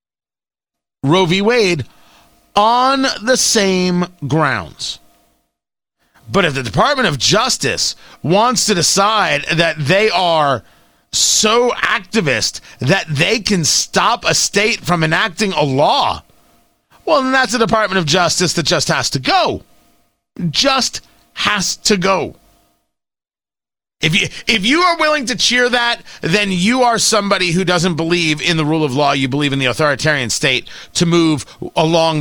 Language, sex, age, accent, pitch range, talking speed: English, male, 30-49, American, 155-235 Hz, 145 wpm